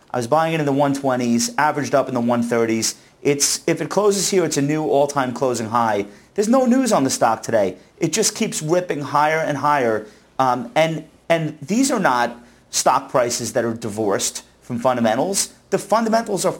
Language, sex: English, male